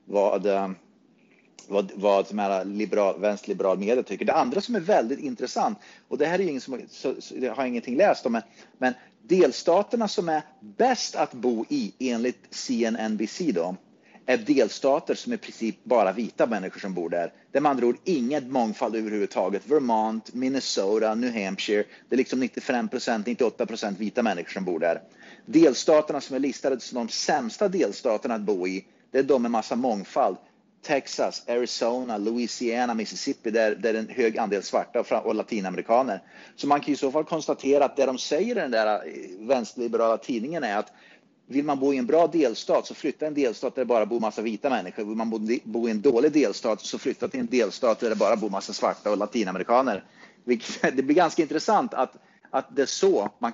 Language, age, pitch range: Swedish, 30-49, 110-150 Hz